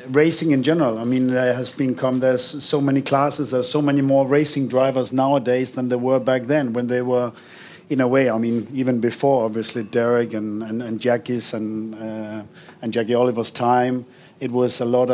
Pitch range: 120-135 Hz